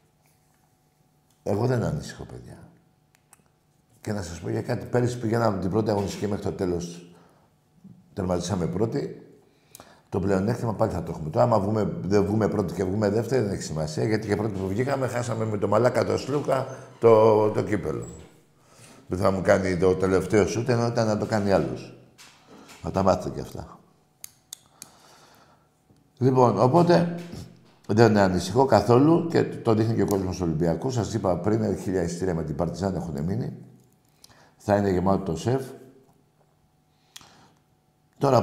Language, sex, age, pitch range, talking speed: Greek, male, 60-79, 95-125 Hz, 155 wpm